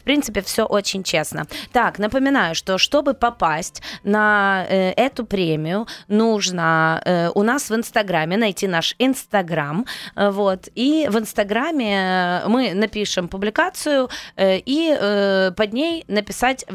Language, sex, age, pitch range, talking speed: Ukrainian, female, 20-39, 185-235 Hz, 135 wpm